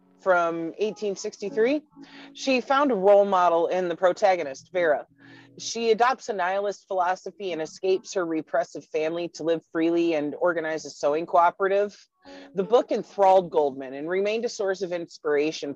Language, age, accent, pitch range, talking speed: English, 30-49, American, 155-210 Hz, 150 wpm